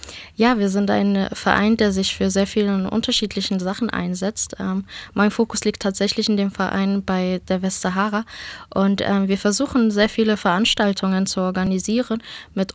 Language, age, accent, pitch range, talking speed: German, 20-39, German, 190-215 Hz, 160 wpm